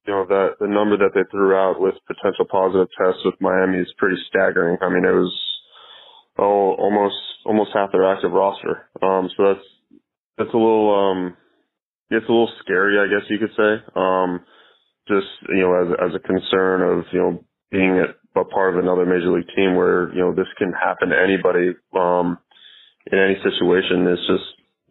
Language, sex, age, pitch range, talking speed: English, male, 20-39, 95-105 Hz, 195 wpm